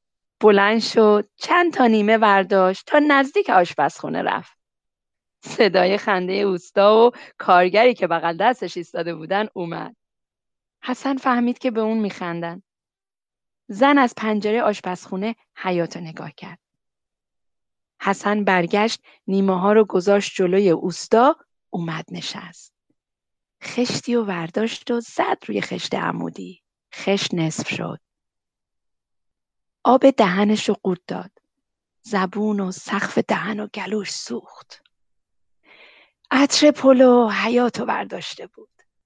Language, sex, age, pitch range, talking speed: Persian, female, 30-49, 185-235 Hz, 110 wpm